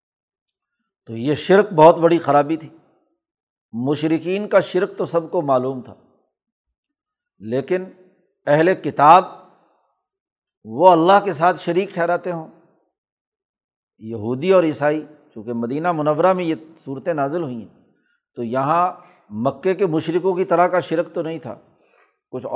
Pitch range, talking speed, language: 130-180 Hz, 135 wpm, Urdu